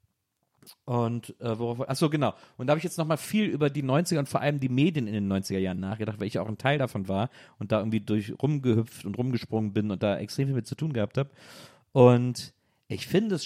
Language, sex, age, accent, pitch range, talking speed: German, male, 40-59, German, 110-130 Hz, 240 wpm